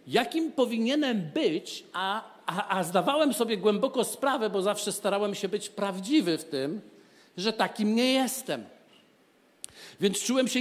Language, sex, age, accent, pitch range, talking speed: Polish, male, 50-69, native, 190-240 Hz, 140 wpm